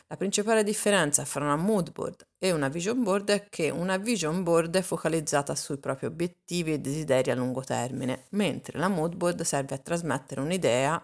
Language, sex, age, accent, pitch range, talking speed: Italian, female, 30-49, native, 135-190 Hz, 185 wpm